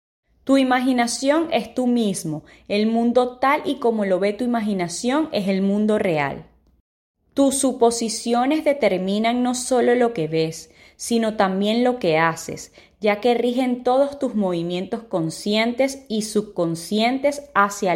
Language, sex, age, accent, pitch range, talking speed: Spanish, female, 20-39, American, 190-250 Hz, 135 wpm